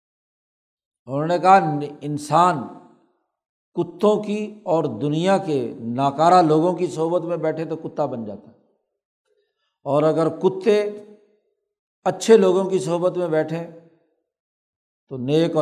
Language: Urdu